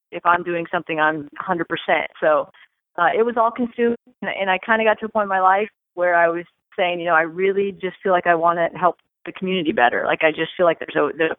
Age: 30-49